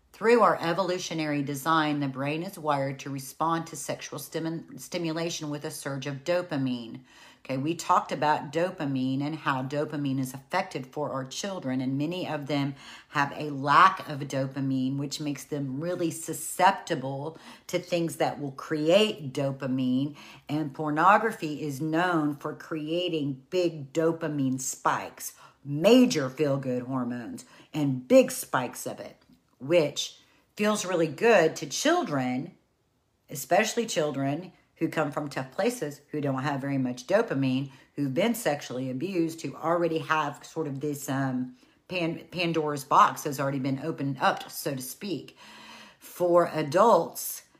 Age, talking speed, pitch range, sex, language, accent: 50-69, 140 wpm, 140-165 Hz, female, English, American